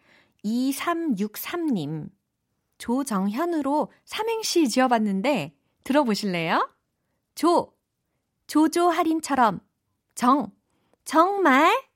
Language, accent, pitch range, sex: Korean, native, 185-295 Hz, female